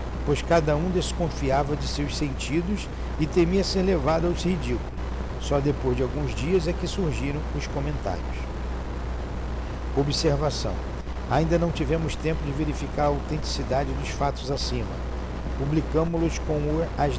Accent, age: Brazilian, 60-79